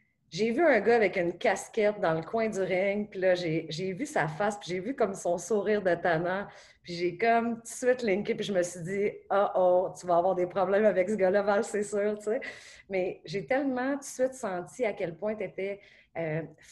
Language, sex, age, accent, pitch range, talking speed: French, female, 30-49, Canadian, 170-210 Hz, 240 wpm